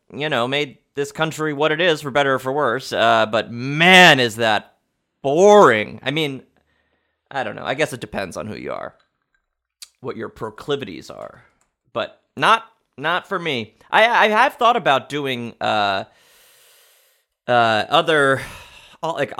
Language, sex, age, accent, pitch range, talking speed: English, male, 30-49, American, 115-180 Hz, 160 wpm